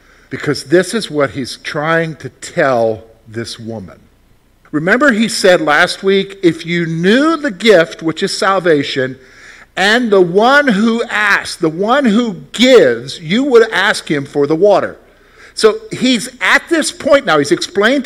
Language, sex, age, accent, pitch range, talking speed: English, male, 50-69, American, 150-210 Hz, 155 wpm